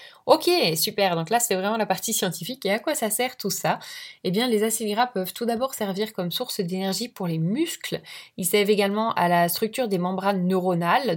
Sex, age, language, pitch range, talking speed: female, 10-29, French, 180-235 Hz, 210 wpm